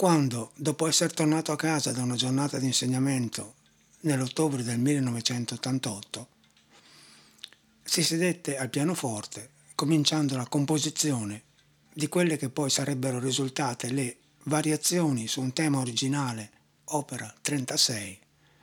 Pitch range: 115-150 Hz